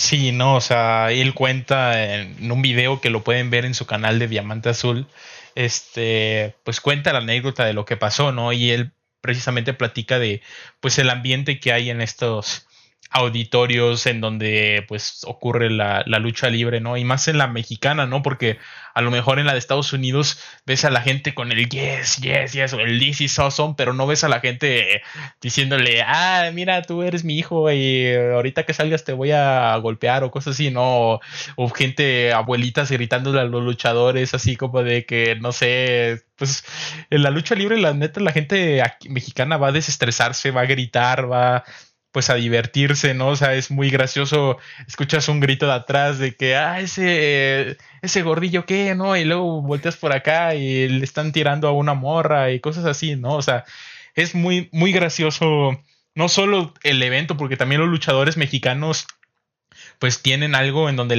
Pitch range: 120-145 Hz